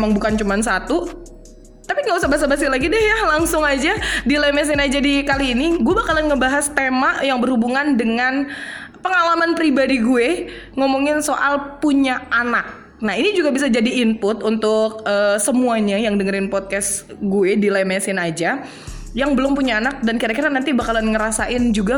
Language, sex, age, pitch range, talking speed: Indonesian, female, 20-39, 215-285 Hz, 160 wpm